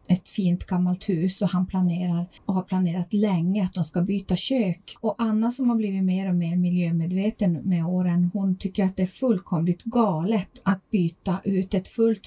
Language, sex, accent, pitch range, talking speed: Swedish, female, native, 180-220 Hz, 190 wpm